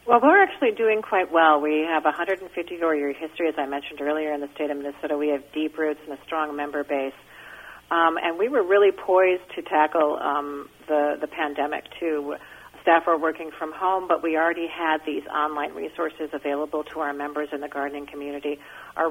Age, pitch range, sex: 40-59, 145-165 Hz, female